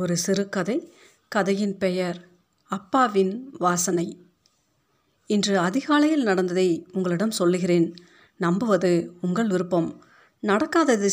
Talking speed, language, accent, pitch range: 80 wpm, Tamil, native, 180-215 Hz